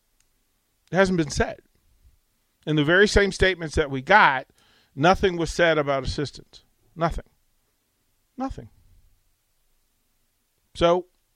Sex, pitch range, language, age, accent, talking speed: male, 115-165 Hz, English, 40-59, American, 105 wpm